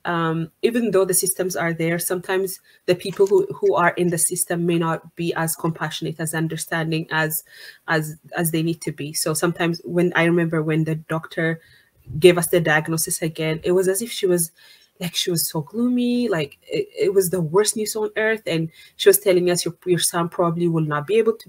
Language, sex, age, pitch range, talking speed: English, female, 20-39, 160-190 Hz, 215 wpm